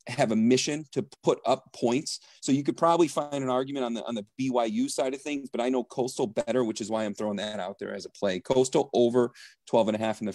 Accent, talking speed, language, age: American, 265 wpm, English, 40-59